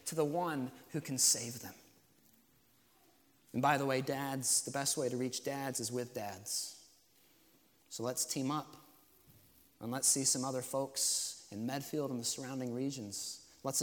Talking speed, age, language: 165 wpm, 30-49, English